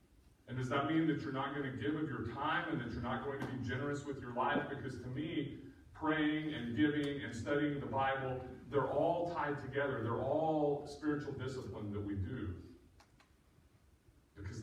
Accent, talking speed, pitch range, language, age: American, 190 wpm, 100-130 Hz, English, 40-59